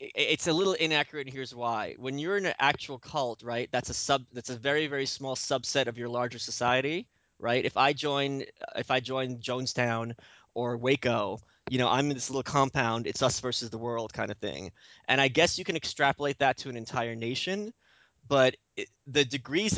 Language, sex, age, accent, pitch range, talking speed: English, male, 20-39, American, 120-145 Hz, 200 wpm